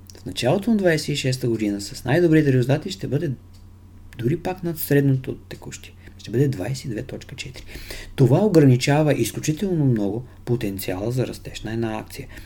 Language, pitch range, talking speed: Bulgarian, 95-140 Hz, 135 wpm